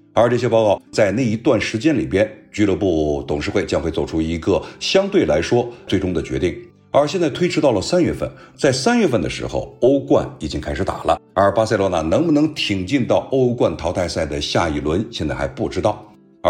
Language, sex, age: Chinese, male, 50-69